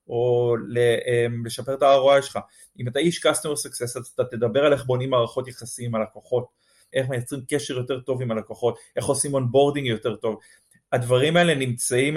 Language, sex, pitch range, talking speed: Hebrew, male, 120-150 Hz, 175 wpm